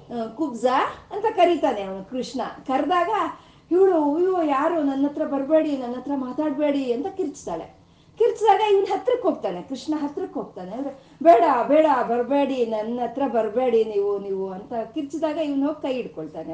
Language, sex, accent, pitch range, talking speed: Kannada, female, native, 225-315 Hz, 130 wpm